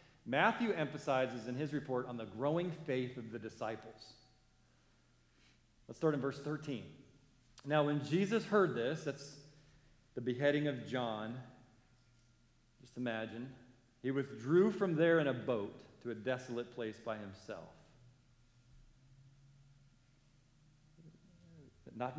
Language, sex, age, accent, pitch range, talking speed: English, male, 40-59, American, 110-140 Hz, 115 wpm